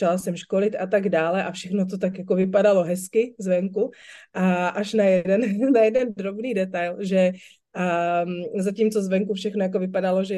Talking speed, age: 160 wpm, 30-49